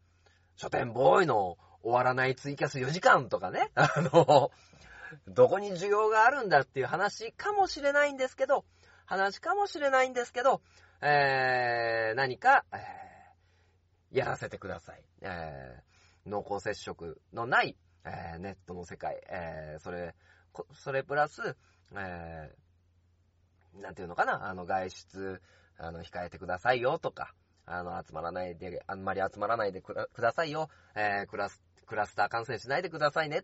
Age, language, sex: 40-59, Japanese, male